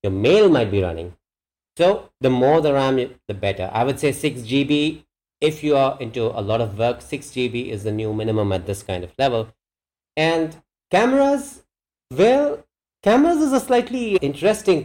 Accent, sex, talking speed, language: Indian, male, 180 wpm, English